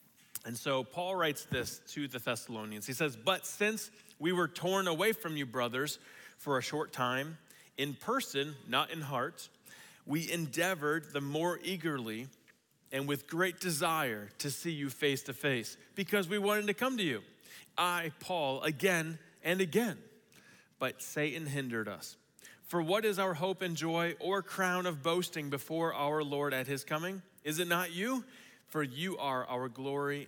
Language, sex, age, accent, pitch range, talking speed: English, male, 40-59, American, 130-175 Hz, 170 wpm